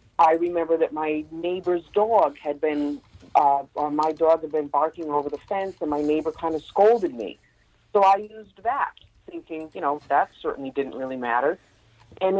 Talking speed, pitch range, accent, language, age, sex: 185 wpm, 145-165 Hz, American, English, 50-69, female